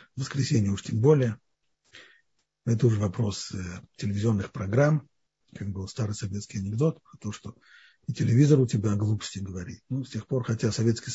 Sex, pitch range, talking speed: male, 105-145 Hz, 170 wpm